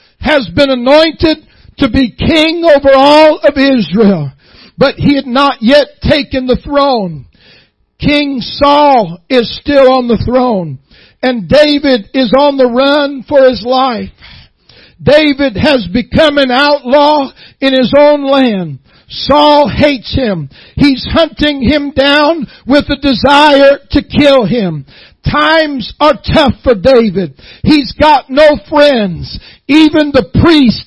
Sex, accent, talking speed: male, American, 130 wpm